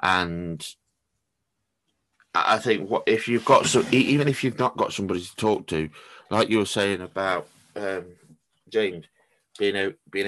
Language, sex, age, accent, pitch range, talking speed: English, male, 20-39, British, 95-140 Hz, 160 wpm